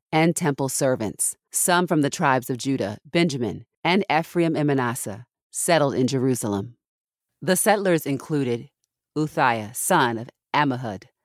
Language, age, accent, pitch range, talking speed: English, 40-59, American, 120-155 Hz, 130 wpm